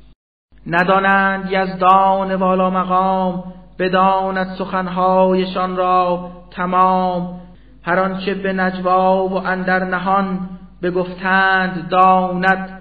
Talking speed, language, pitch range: 80 wpm, Persian, 175-185 Hz